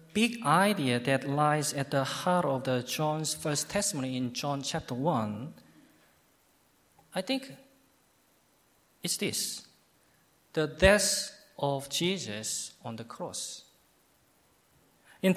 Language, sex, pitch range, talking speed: English, male, 130-185 Hz, 105 wpm